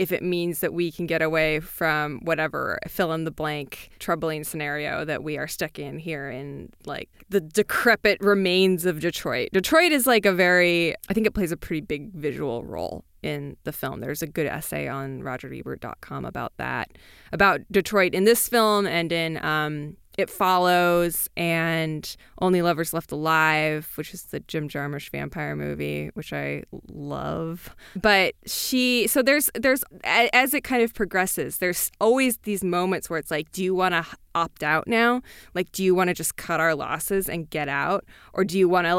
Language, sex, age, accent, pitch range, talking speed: English, female, 20-39, American, 160-210 Hz, 185 wpm